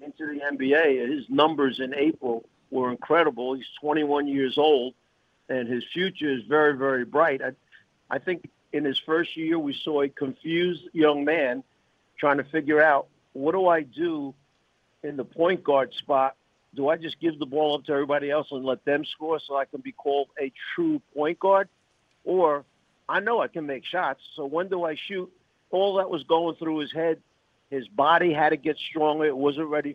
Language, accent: English, American